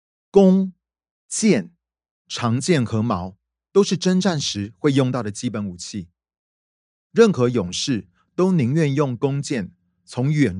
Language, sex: Chinese, male